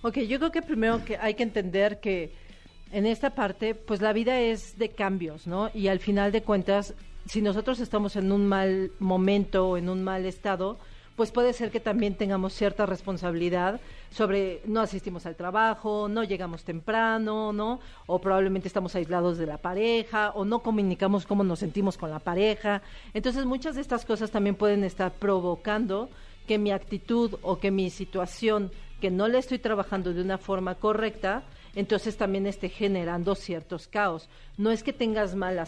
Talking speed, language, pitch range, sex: 180 wpm, Spanish, 185-215 Hz, female